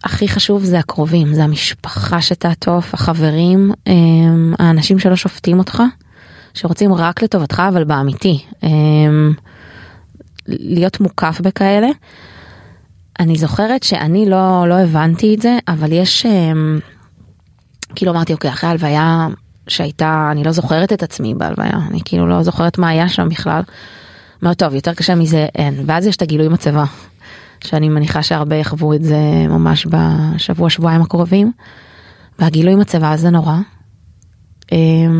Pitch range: 150-190 Hz